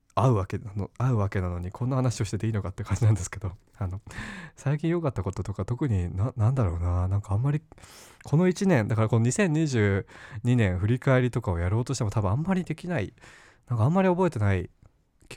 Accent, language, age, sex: native, Japanese, 20-39, male